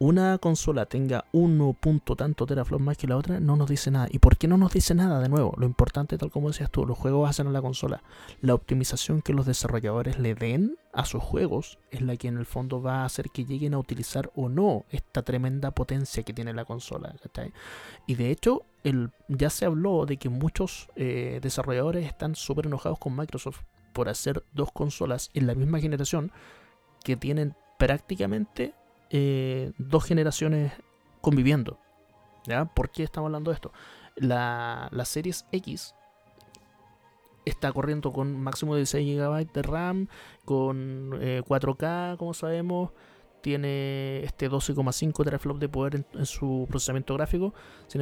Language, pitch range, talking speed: Spanish, 130-155 Hz, 170 wpm